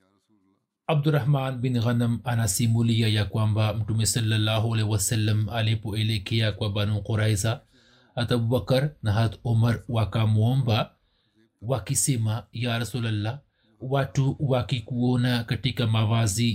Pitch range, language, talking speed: 110-135 Hz, Swahili, 105 wpm